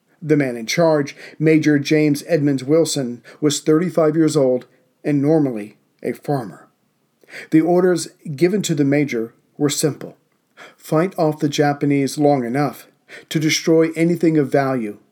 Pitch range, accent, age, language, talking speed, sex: 140-160 Hz, American, 40-59, English, 140 wpm, male